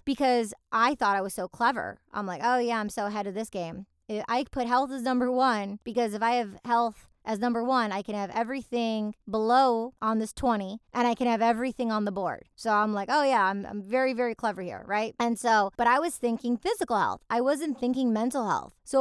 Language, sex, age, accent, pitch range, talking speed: English, female, 20-39, American, 195-240 Hz, 230 wpm